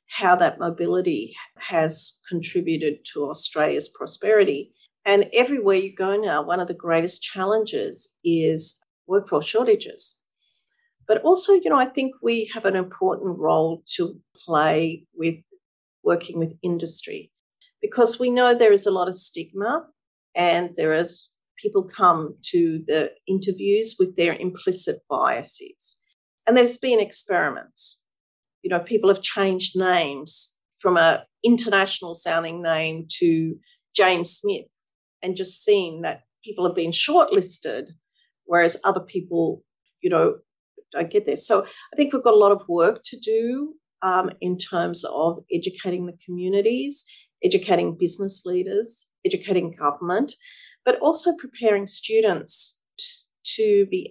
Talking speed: 135 wpm